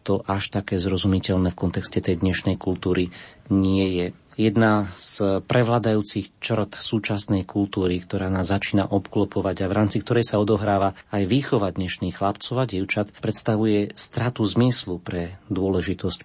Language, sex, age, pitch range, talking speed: Slovak, male, 30-49, 95-115 Hz, 135 wpm